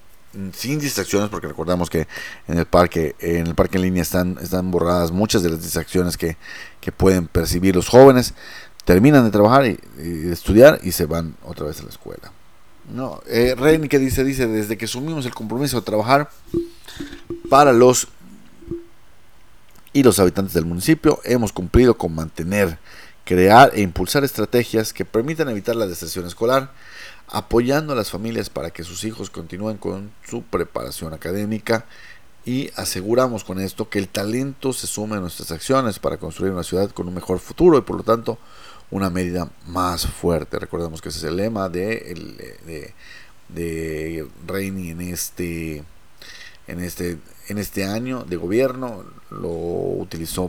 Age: 40-59